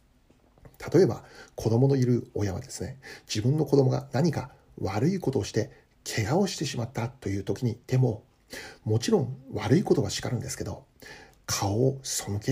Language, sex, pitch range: Japanese, male, 110-135 Hz